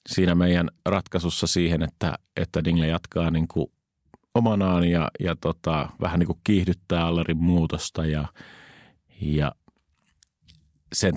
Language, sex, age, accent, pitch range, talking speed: Finnish, male, 30-49, native, 80-100 Hz, 115 wpm